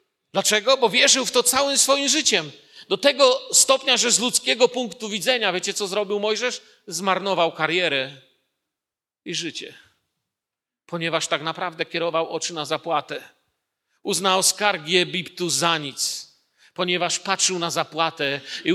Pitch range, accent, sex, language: 170-220 Hz, native, male, Polish